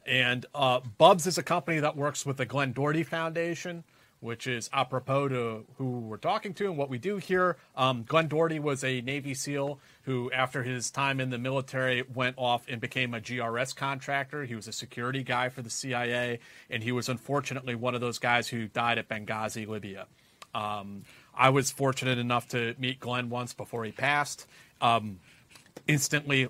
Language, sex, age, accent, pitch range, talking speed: English, male, 40-59, American, 120-150 Hz, 185 wpm